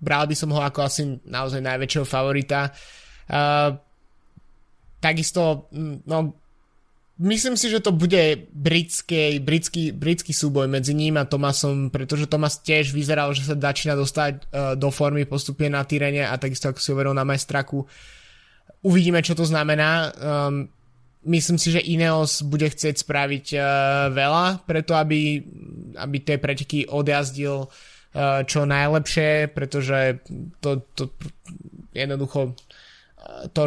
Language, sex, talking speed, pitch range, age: Slovak, male, 130 wpm, 140-155 Hz, 20-39